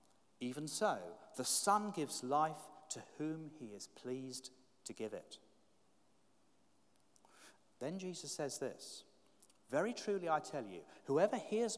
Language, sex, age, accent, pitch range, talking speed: English, male, 40-59, British, 125-175 Hz, 125 wpm